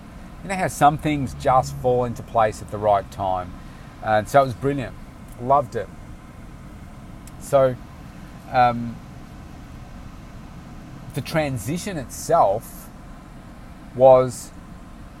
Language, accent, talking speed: English, Australian, 105 wpm